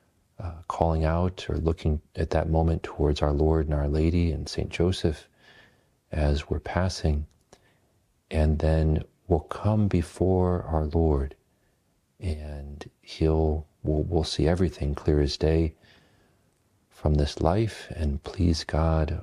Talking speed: 130 wpm